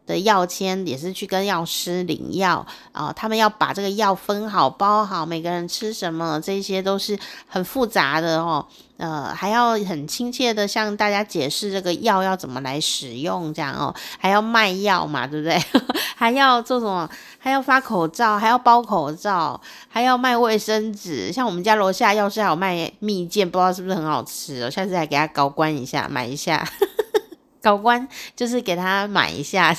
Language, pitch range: Chinese, 165-225 Hz